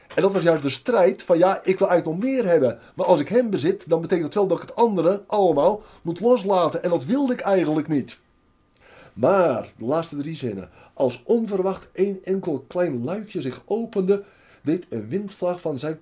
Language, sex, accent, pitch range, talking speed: Dutch, male, Dutch, 145-195 Hz, 200 wpm